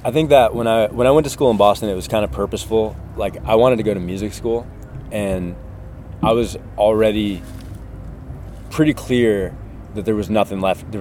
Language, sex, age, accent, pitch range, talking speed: English, male, 20-39, American, 90-110 Hz, 200 wpm